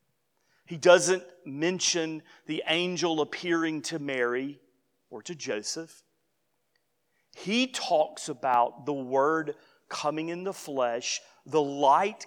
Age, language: 40-59, English